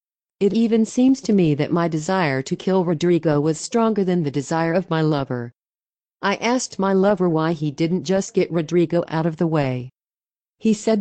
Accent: American